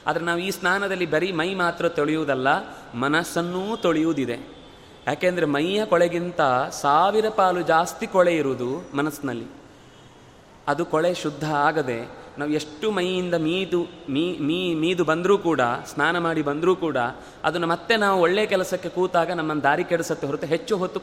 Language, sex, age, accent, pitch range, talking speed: Kannada, male, 30-49, native, 160-195 Hz, 135 wpm